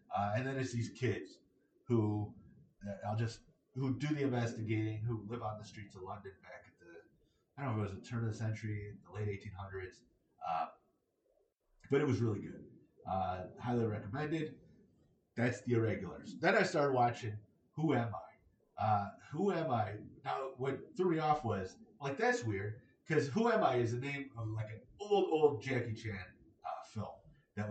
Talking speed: 190 wpm